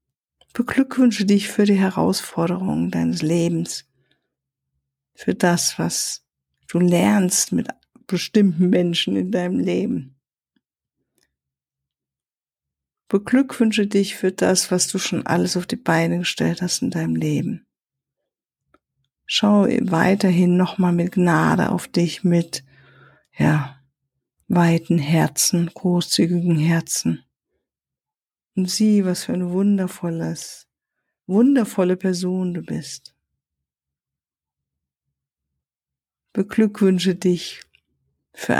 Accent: German